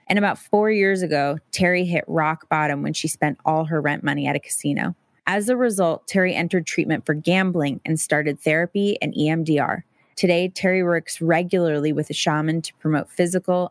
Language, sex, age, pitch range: English, female, 20-39, 150-180 Hz